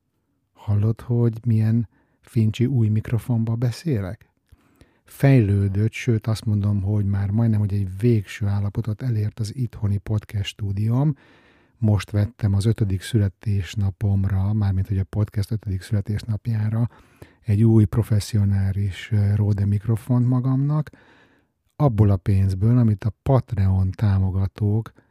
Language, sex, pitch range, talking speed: Hungarian, male, 100-115 Hz, 110 wpm